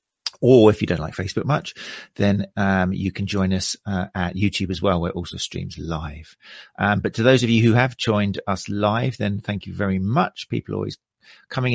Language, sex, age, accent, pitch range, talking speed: English, male, 40-59, British, 95-120 Hz, 215 wpm